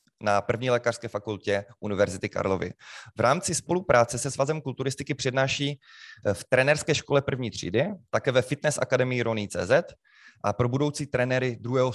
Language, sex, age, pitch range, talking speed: Czech, male, 20-39, 120-150 Hz, 145 wpm